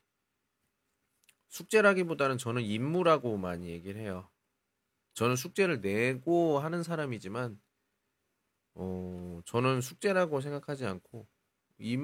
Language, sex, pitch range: Chinese, male, 95-140 Hz